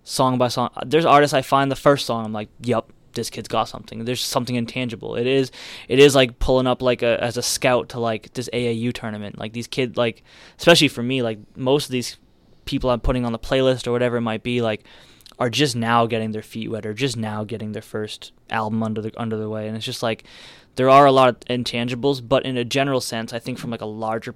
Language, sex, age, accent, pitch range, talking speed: English, male, 10-29, American, 115-130 Hz, 245 wpm